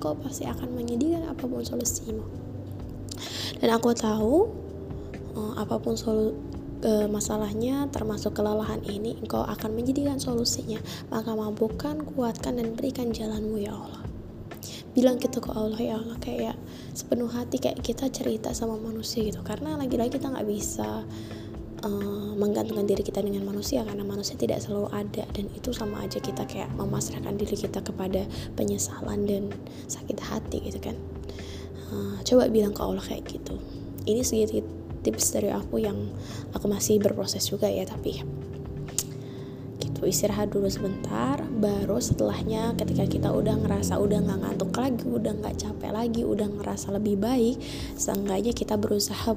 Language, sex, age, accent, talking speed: Indonesian, female, 20-39, native, 145 wpm